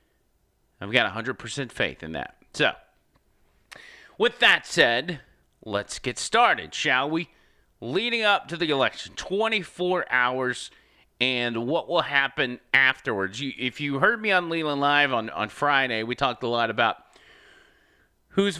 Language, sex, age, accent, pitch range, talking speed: English, male, 30-49, American, 120-170 Hz, 140 wpm